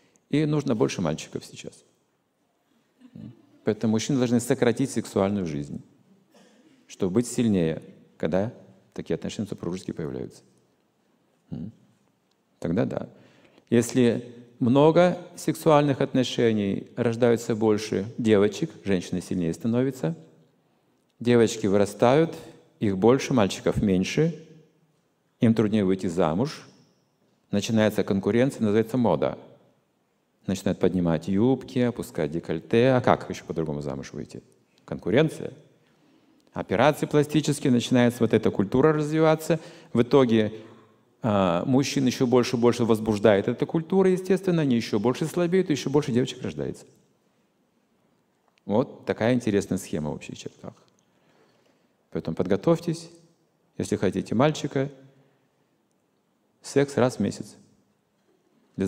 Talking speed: 105 wpm